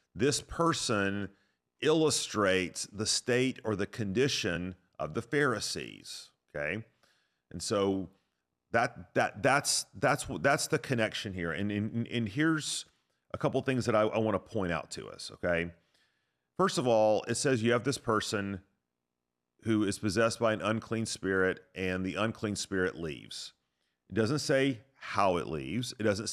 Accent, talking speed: American, 155 wpm